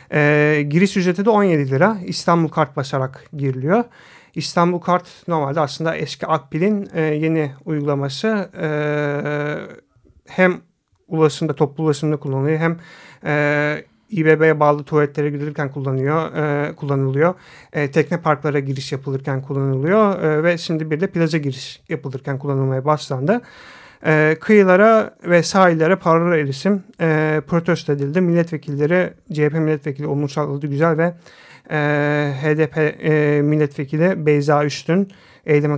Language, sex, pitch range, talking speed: Turkish, male, 145-170 Hz, 120 wpm